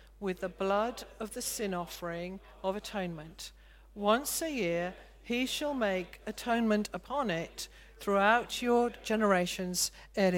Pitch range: 180-225 Hz